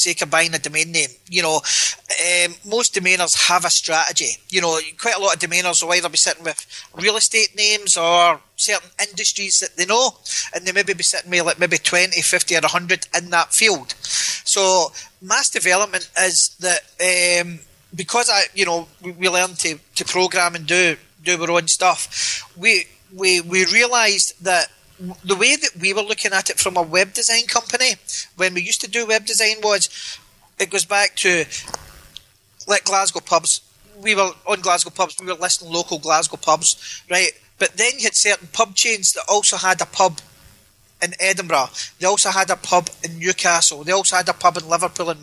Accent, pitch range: British, 170-195 Hz